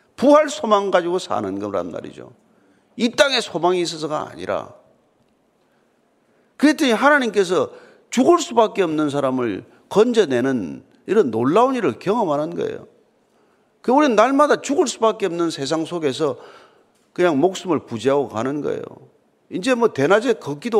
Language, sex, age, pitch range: Korean, male, 40-59, 160-265 Hz